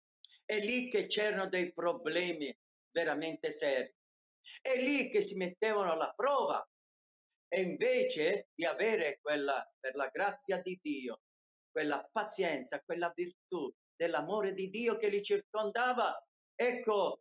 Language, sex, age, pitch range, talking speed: Italian, male, 50-69, 185-280 Hz, 125 wpm